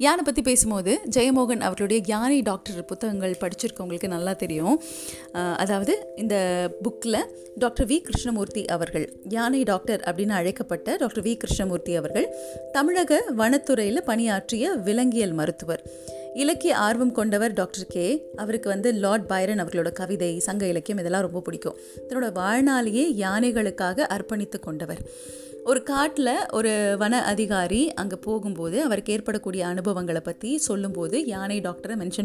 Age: 30-49